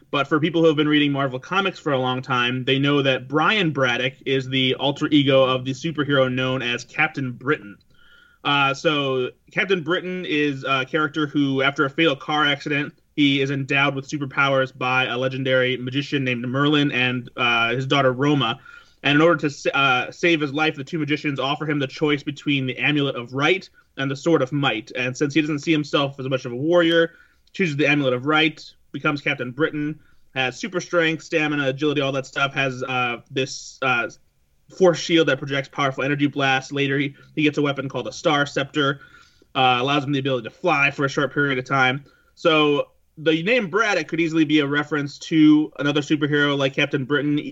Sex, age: male, 30-49